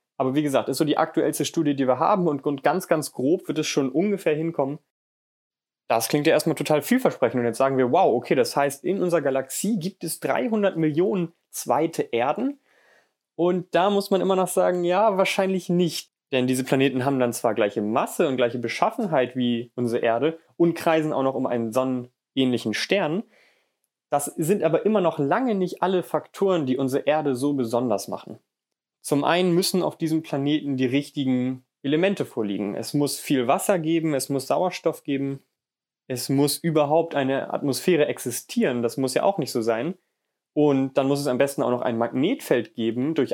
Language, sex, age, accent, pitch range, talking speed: German, male, 30-49, German, 130-165 Hz, 185 wpm